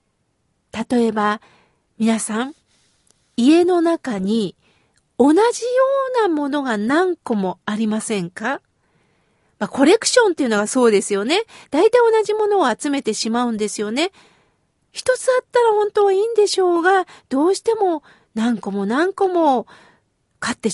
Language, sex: Japanese, female